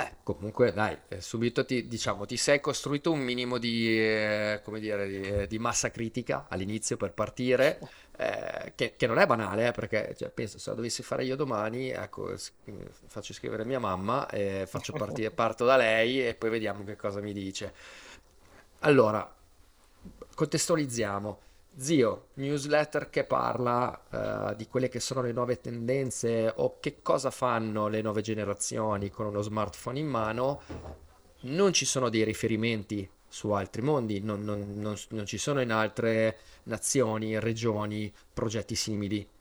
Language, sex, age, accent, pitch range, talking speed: Italian, male, 30-49, native, 105-125 Hz, 155 wpm